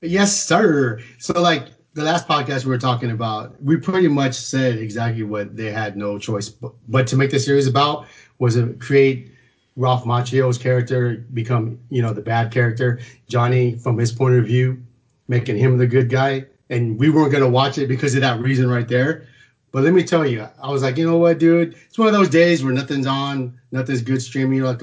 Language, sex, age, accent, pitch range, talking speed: English, male, 30-49, American, 120-145 Hz, 215 wpm